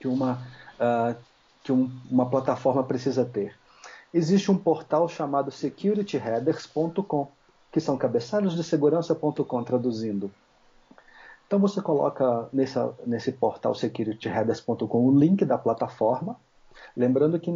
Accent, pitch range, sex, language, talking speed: Brazilian, 125-170 Hz, male, Portuguese, 115 wpm